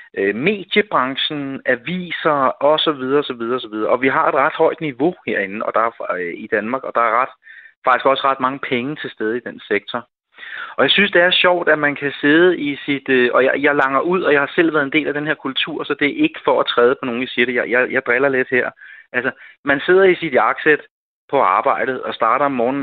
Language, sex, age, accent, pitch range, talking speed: Danish, male, 30-49, native, 130-165 Hz, 240 wpm